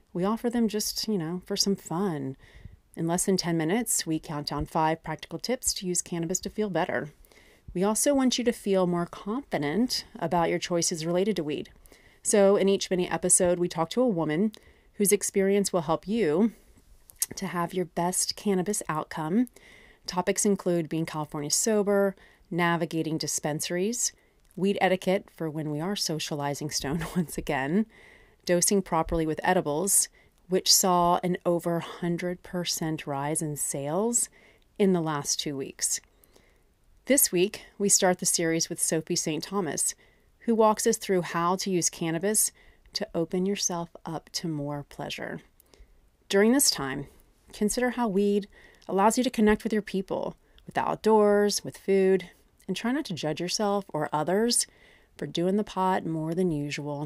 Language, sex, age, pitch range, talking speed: English, female, 30-49, 165-205 Hz, 160 wpm